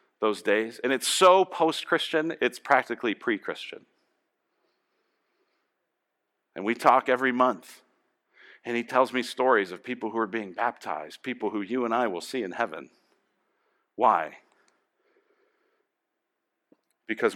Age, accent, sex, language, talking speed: 50-69, American, male, English, 130 wpm